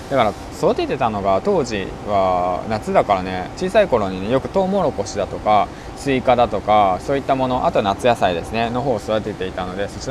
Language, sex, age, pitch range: Japanese, male, 20-39, 95-130 Hz